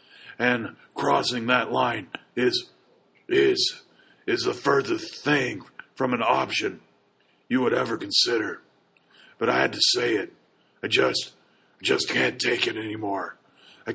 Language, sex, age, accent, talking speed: English, male, 40-59, American, 140 wpm